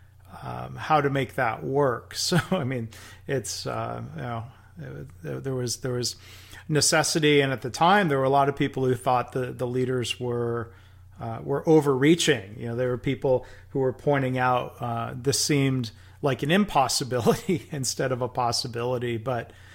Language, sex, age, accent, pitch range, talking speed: English, male, 40-59, American, 115-140 Hz, 170 wpm